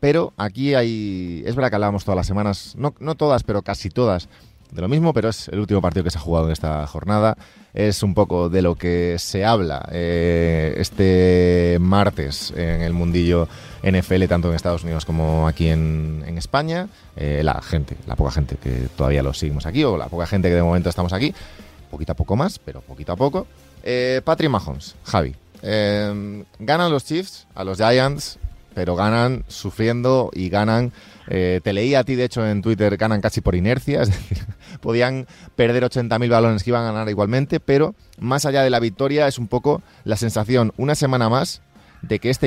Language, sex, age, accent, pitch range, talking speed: Spanish, male, 30-49, Spanish, 85-115 Hz, 200 wpm